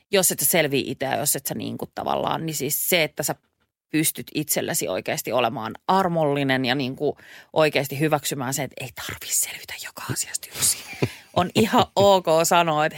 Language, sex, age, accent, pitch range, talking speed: Finnish, female, 30-49, native, 150-185 Hz, 160 wpm